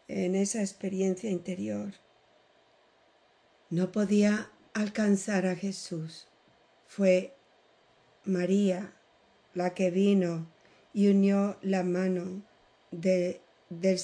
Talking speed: 80 wpm